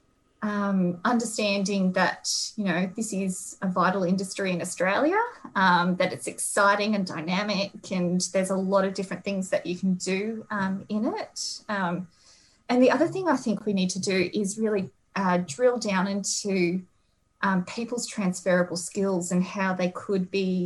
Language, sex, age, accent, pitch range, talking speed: English, female, 20-39, Australian, 180-215 Hz, 170 wpm